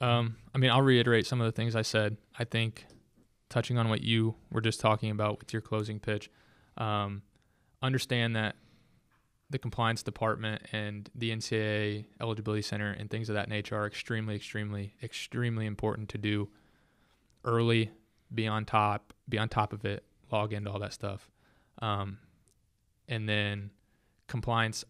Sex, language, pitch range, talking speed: male, English, 105-120 Hz, 155 wpm